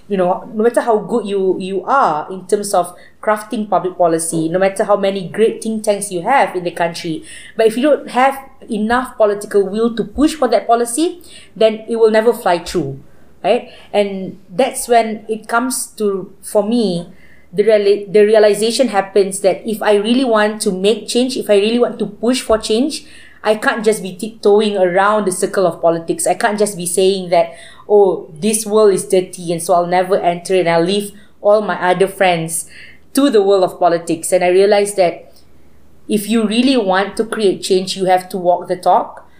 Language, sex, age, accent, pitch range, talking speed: English, female, 20-39, Malaysian, 180-220 Hz, 200 wpm